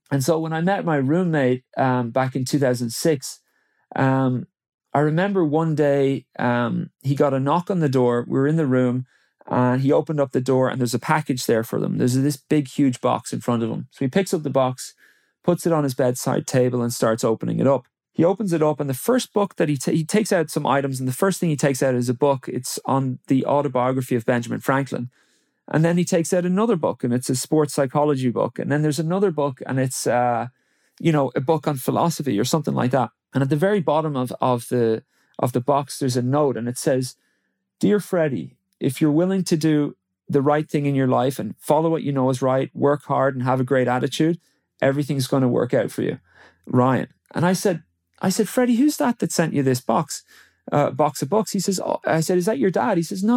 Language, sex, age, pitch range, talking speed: English, male, 30-49, 130-165 Hz, 240 wpm